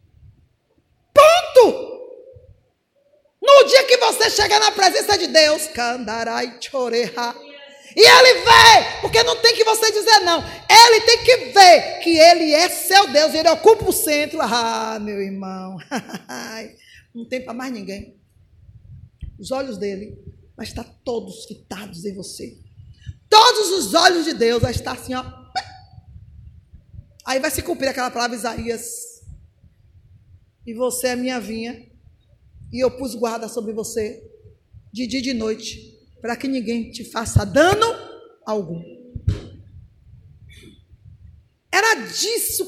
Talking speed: 130 wpm